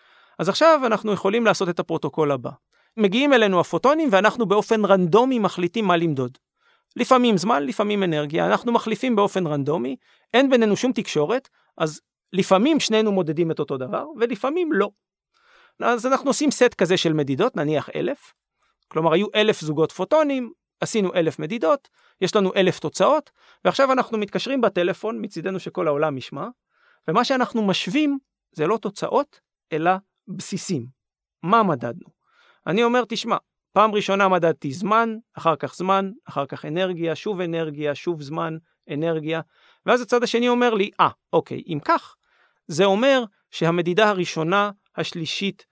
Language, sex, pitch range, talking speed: Hebrew, male, 165-240 Hz, 145 wpm